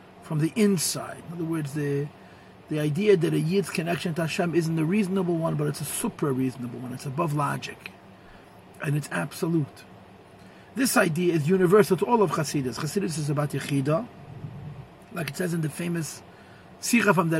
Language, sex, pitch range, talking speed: English, male, 145-185 Hz, 180 wpm